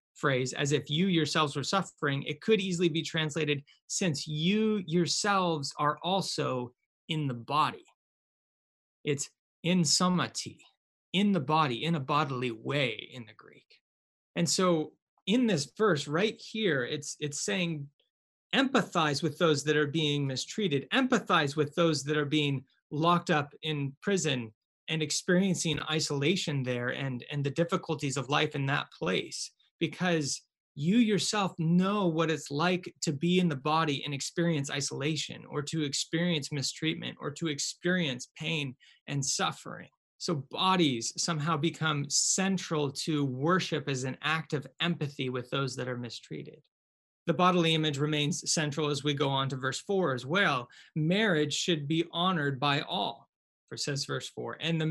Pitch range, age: 145-175 Hz, 30-49